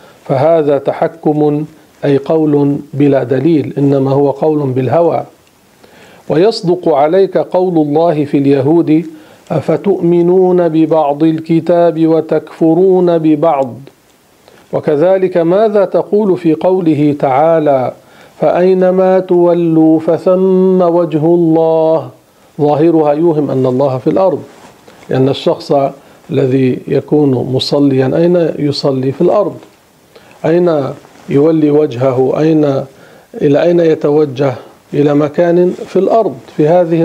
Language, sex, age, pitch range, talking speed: Arabic, male, 50-69, 140-170 Hz, 95 wpm